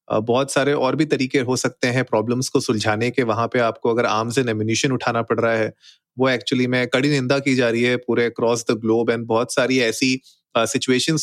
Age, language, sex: 30-49, Hindi, male